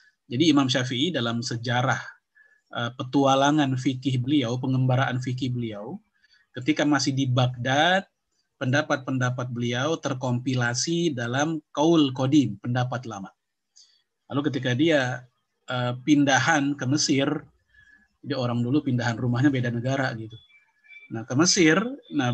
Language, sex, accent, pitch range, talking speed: English, male, Indonesian, 125-165 Hz, 110 wpm